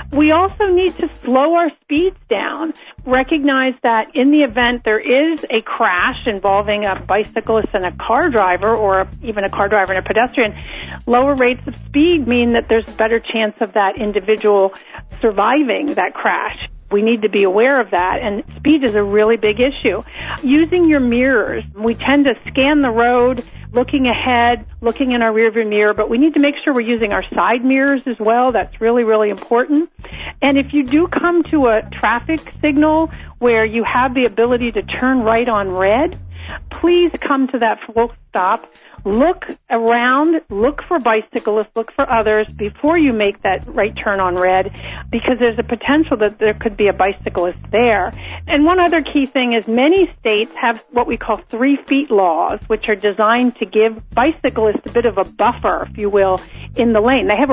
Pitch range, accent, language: 215-275 Hz, American, English